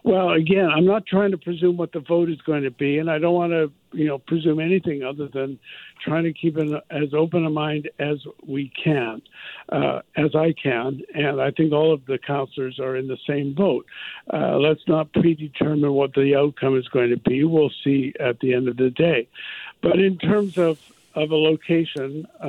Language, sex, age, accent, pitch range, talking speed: English, male, 60-79, American, 140-160 Hz, 205 wpm